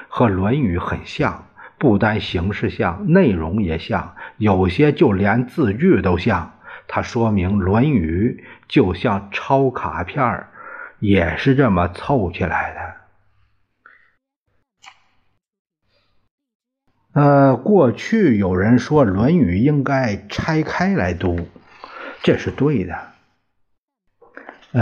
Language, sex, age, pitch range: Chinese, male, 50-69, 95-135 Hz